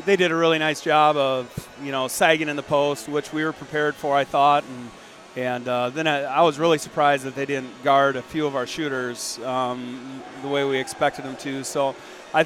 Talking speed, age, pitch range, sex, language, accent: 225 wpm, 30-49, 130-150 Hz, male, English, American